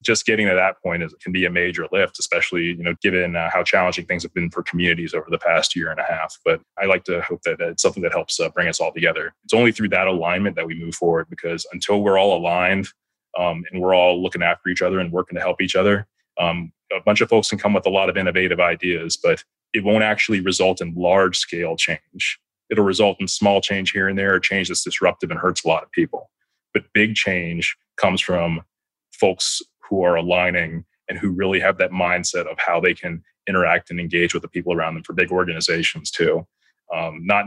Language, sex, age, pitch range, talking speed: English, male, 30-49, 85-100 Hz, 230 wpm